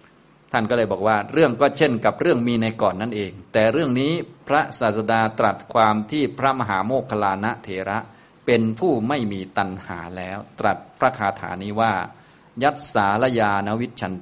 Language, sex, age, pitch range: Thai, male, 20-39, 100-120 Hz